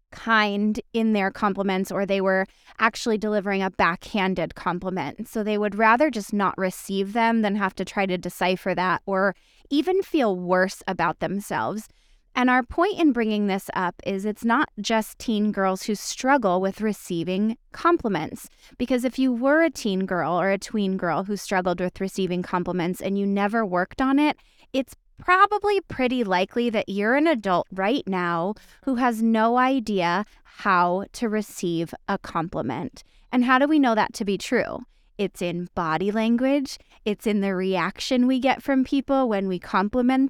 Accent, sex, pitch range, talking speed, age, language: American, female, 190-255 Hz, 175 wpm, 20-39, English